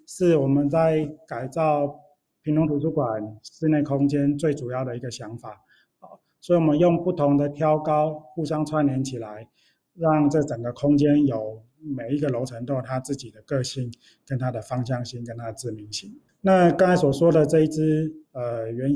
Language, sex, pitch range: Chinese, male, 125-155 Hz